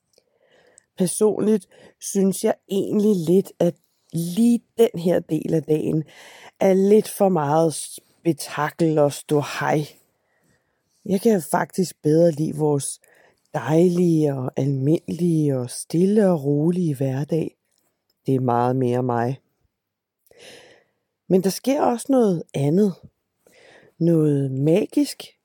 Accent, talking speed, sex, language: native, 110 wpm, female, Danish